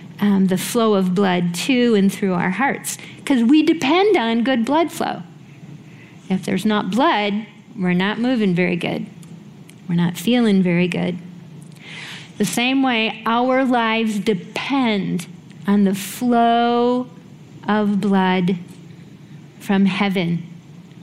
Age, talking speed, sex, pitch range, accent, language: 40-59, 125 wpm, female, 175-220 Hz, American, English